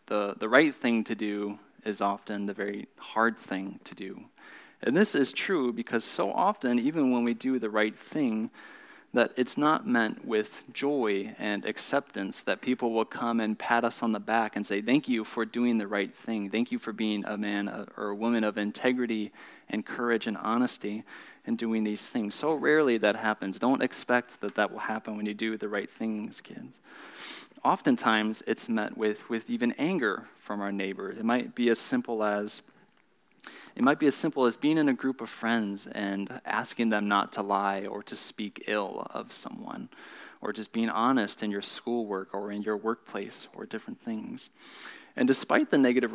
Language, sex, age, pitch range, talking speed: English, male, 20-39, 105-120 Hz, 195 wpm